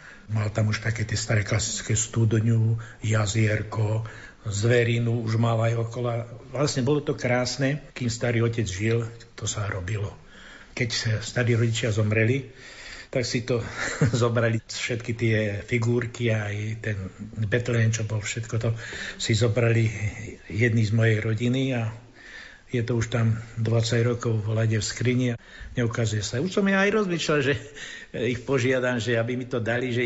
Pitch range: 110-125 Hz